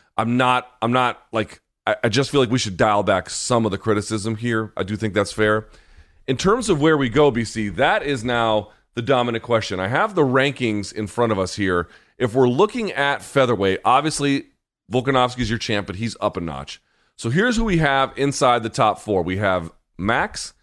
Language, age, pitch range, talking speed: English, 30-49, 105-135 Hz, 210 wpm